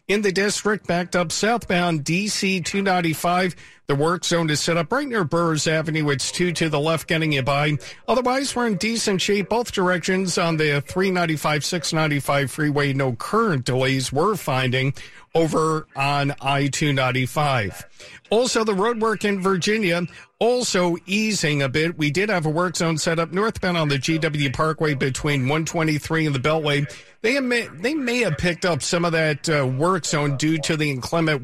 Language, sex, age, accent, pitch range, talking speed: English, male, 50-69, American, 145-190 Hz, 170 wpm